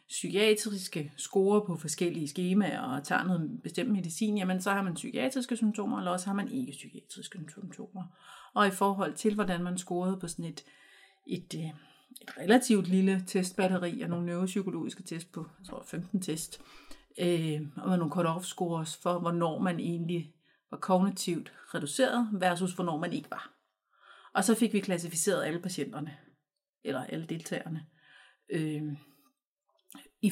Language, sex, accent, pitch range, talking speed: Danish, female, native, 165-215 Hz, 150 wpm